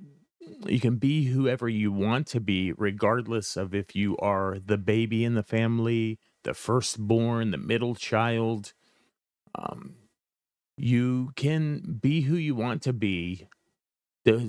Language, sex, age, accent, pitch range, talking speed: English, male, 30-49, American, 110-135 Hz, 135 wpm